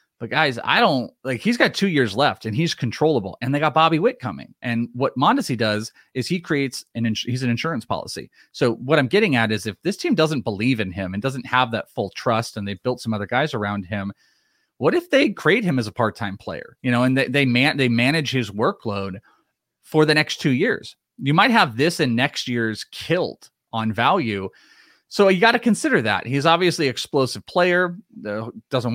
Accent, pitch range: American, 110-145 Hz